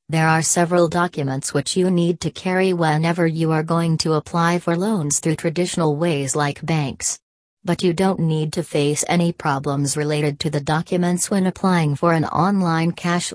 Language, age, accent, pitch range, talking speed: English, 40-59, American, 150-175 Hz, 180 wpm